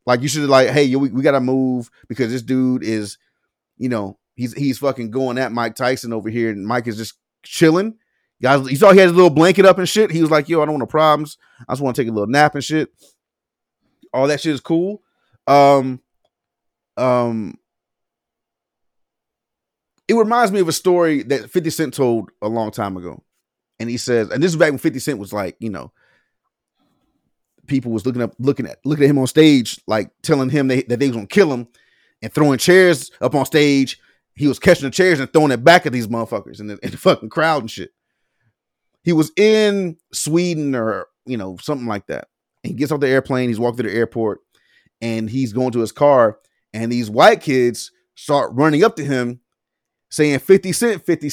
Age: 30-49